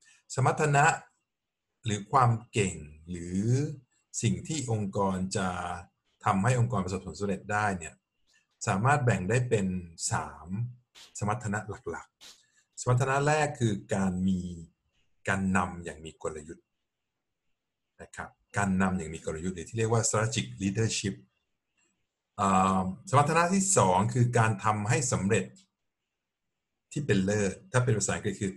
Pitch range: 95-125 Hz